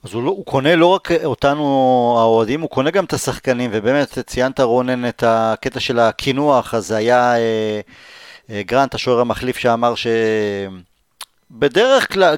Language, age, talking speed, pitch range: Hebrew, 30-49, 155 wpm, 120-165 Hz